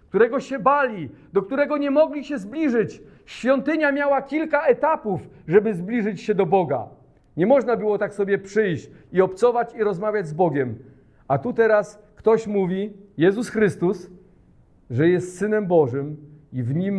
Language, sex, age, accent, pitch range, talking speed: Polish, male, 40-59, native, 175-270 Hz, 155 wpm